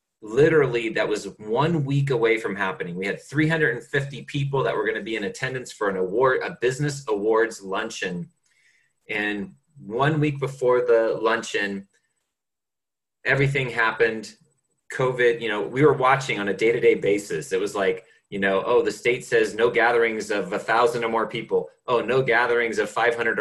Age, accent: 30-49, American